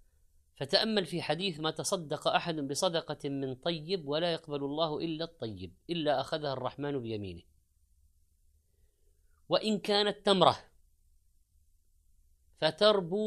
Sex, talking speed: female, 100 wpm